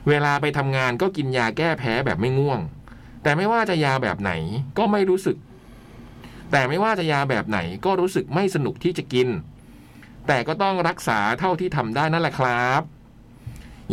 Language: Thai